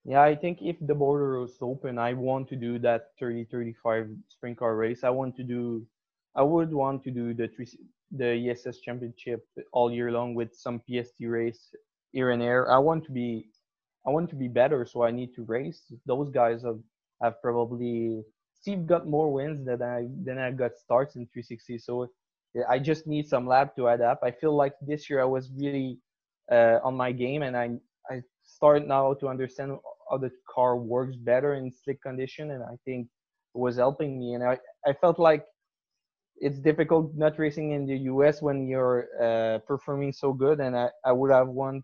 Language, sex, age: English, male, 20-39